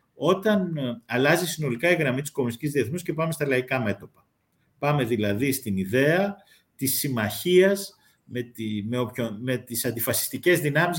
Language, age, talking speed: Greek, 50-69, 145 wpm